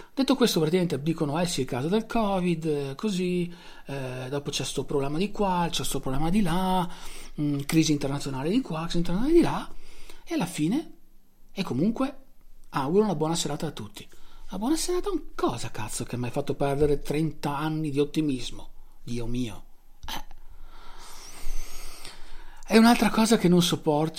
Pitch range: 125-175 Hz